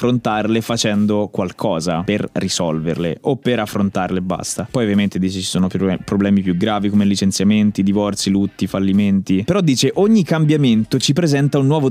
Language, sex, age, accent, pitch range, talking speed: Italian, male, 20-39, native, 105-135 Hz, 150 wpm